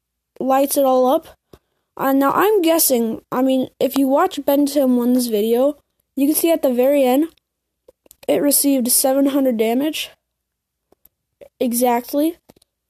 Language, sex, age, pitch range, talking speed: English, female, 10-29, 240-285 Hz, 140 wpm